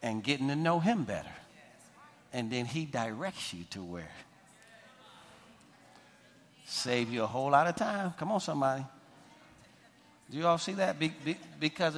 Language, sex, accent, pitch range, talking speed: English, male, American, 120-165 Hz, 145 wpm